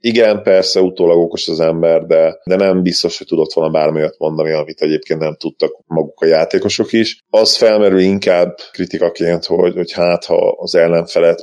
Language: Hungarian